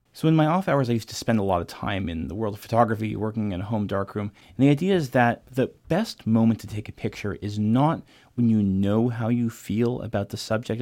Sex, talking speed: male, 255 wpm